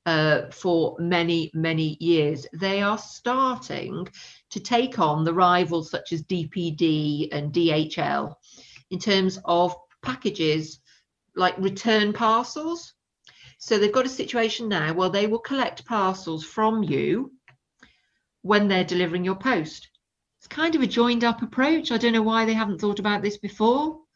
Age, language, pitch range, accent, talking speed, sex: 40-59, English, 170-225 Hz, British, 150 wpm, female